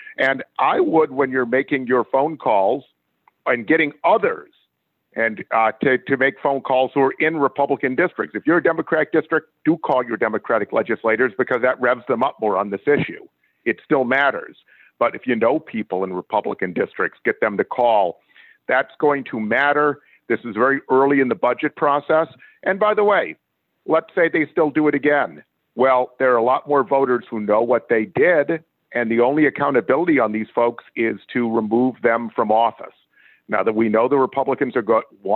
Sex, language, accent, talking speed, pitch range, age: male, English, American, 195 wpm, 115-150 Hz, 50-69